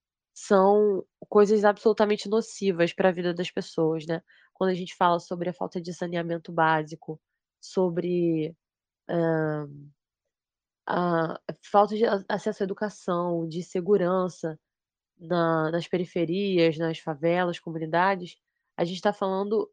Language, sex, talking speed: Portuguese, female, 120 wpm